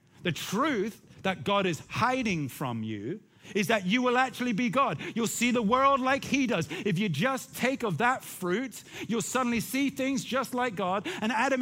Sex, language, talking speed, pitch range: male, English, 195 wpm, 165-230 Hz